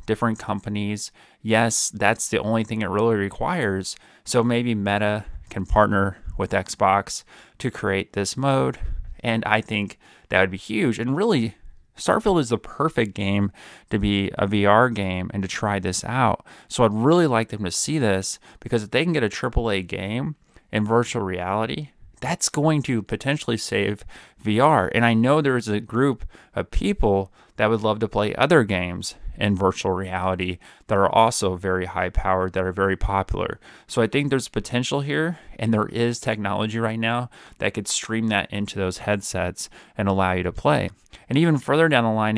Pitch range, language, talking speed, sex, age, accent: 95-120 Hz, English, 185 wpm, male, 30-49, American